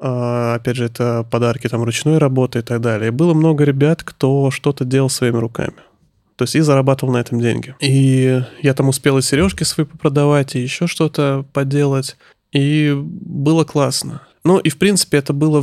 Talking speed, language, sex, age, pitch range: 175 wpm, Russian, male, 20-39, 125-150 Hz